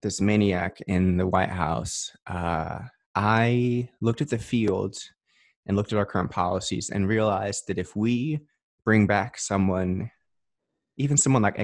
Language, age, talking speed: English, 20-39, 150 wpm